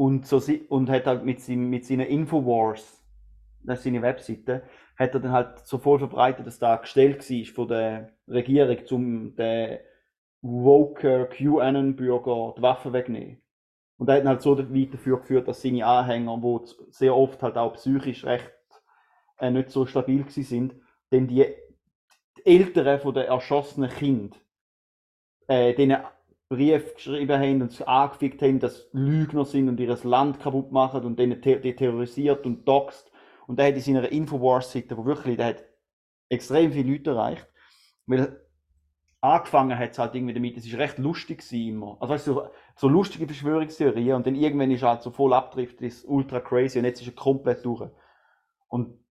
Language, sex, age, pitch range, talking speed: German, male, 30-49, 120-140 Hz, 170 wpm